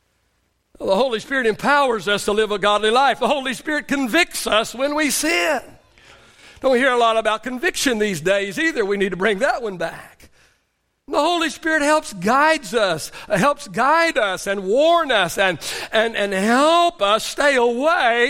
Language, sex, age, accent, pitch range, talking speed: English, male, 60-79, American, 205-280 Hz, 175 wpm